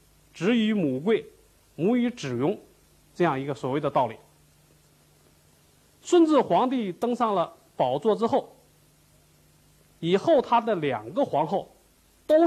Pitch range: 150-250 Hz